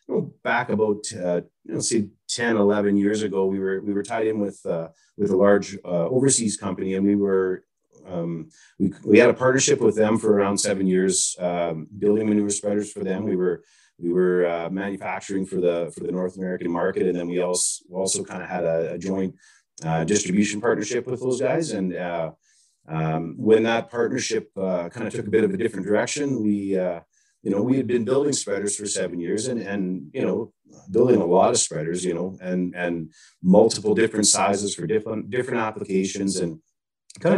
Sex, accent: male, American